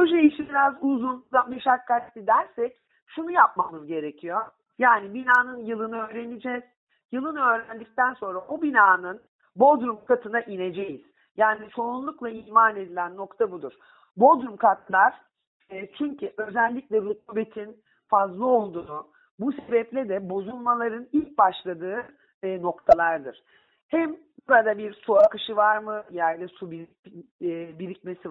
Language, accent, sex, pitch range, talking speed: Turkish, native, male, 185-240 Hz, 110 wpm